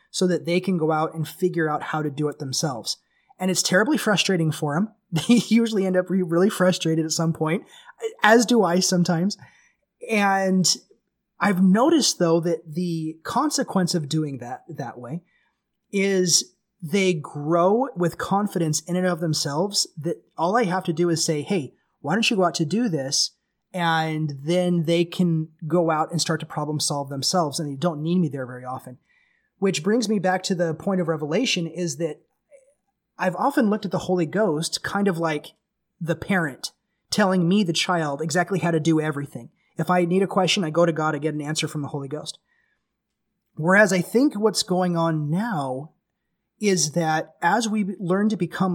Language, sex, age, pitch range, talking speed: English, male, 20-39, 160-195 Hz, 190 wpm